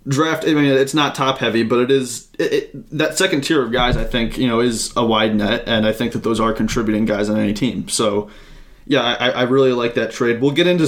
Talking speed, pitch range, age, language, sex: 260 wpm, 115-135 Hz, 20-39, English, male